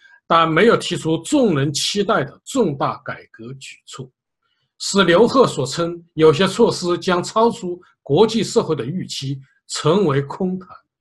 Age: 50-69